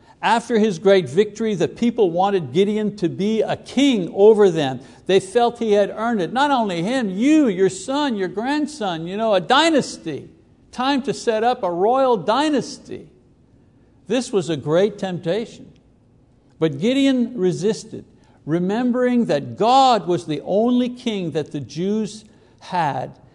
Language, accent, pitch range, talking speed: English, American, 140-205 Hz, 150 wpm